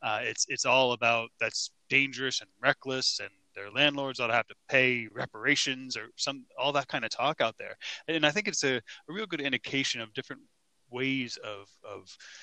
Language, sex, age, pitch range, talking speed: English, male, 30-49, 115-140 Hz, 200 wpm